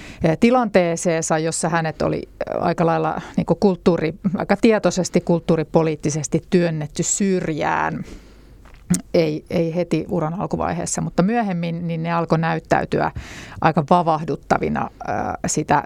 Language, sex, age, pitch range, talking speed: Finnish, female, 30-49, 160-180 Hz, 100 wpm